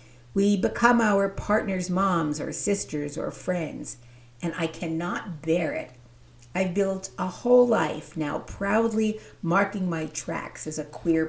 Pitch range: 135-205 Hz